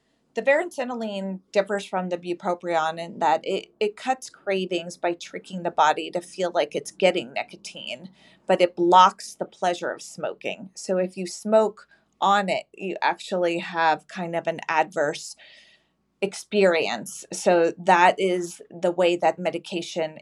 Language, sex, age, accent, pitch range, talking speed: English, female, 30-49, American, 175-205 Hz, 150 wpm